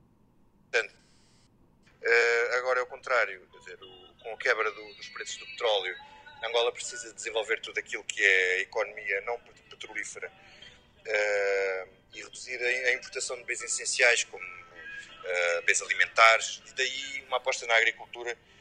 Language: Portuguese